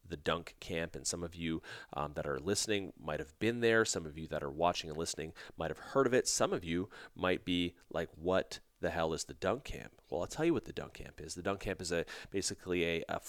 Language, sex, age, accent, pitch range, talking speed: English, male, 30-49, American, 85-100 Hz, 260 wpm